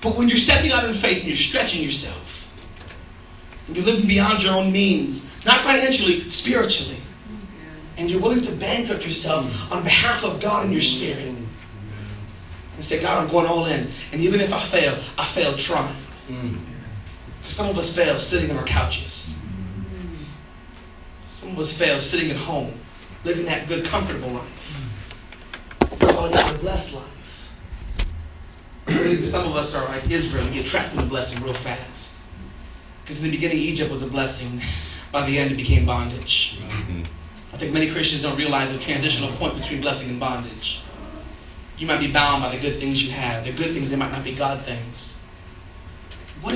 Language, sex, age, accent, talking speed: English, male, 30-49, American, 175 wpm